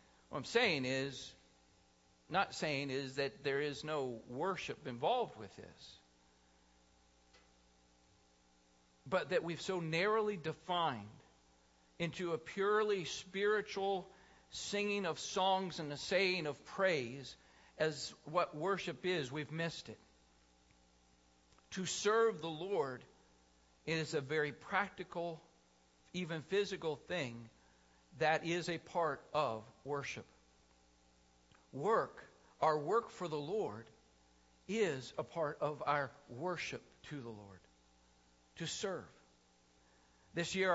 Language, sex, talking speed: English, male, 110 wpm